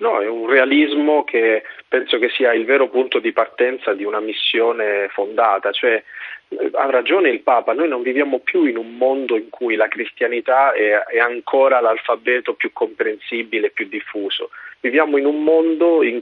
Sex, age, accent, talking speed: male, 40-59, native, 165 wpm